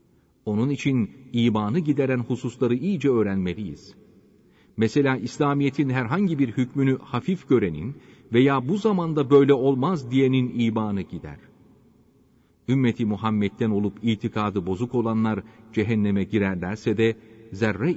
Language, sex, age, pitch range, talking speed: Turkish, male, 40-59, 105-140 Hz, 105 wpm